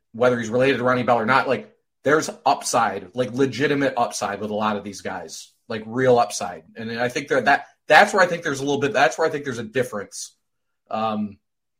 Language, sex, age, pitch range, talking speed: English, male, 30-49, 110-145 Hz, 220 wpm